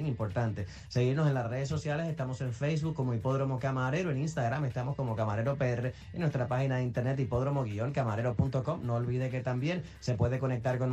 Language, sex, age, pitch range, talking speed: Spanish, male, 30-49, 120-150 Hz, 180 wpm